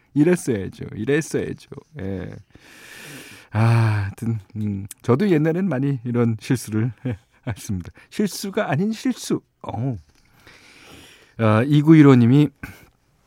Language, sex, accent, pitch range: Korean, male, native, 105-170 Hz